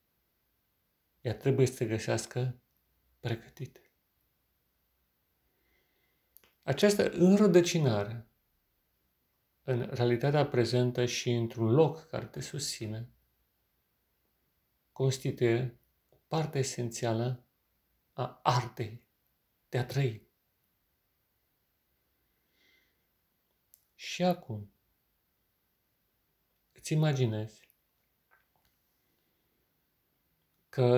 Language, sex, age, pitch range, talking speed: Romanian, male, 40-59, 115-135 Hz, 55 wpm